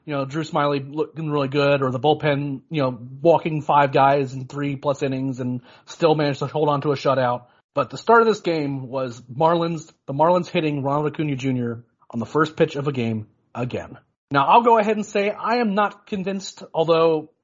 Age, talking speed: 30-49, 210 wpm